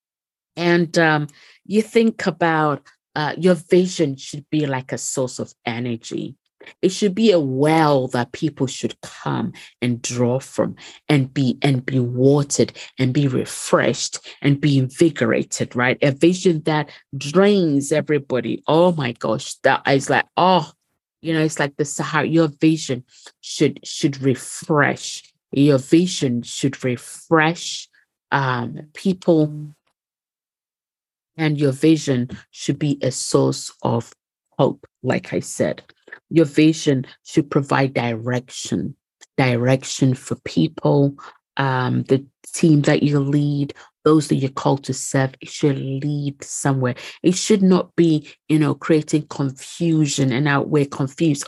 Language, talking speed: English, 135 wpm